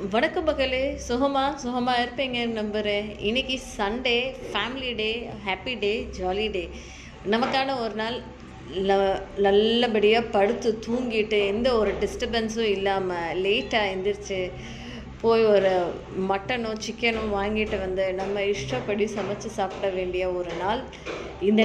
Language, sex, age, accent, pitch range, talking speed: Tamil, female, 20-39, native, 200-260 Hz, 110 wpm